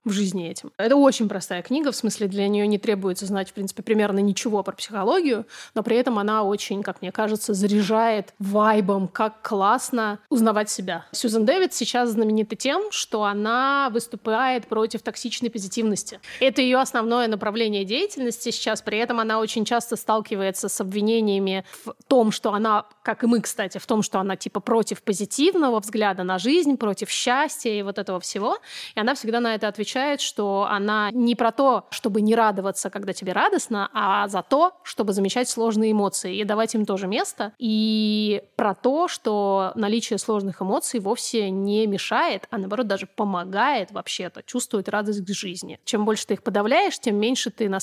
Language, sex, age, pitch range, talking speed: Russian, female, 20-39, 200-235 Hz, 175 wpm